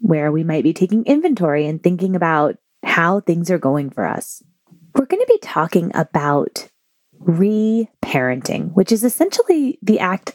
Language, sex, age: English, female, 20-39